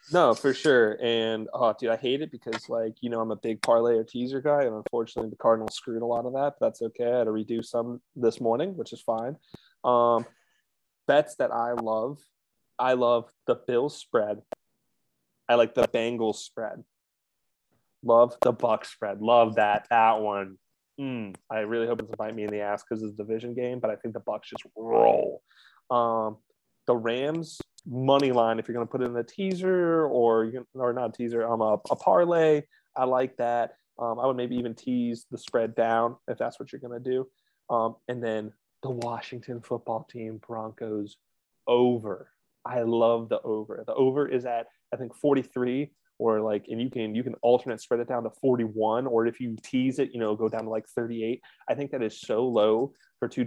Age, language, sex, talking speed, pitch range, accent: 20-39, English, male, 205 wpm, 110-125 Hz, American